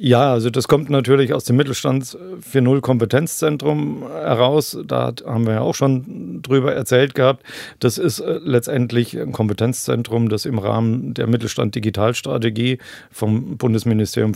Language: German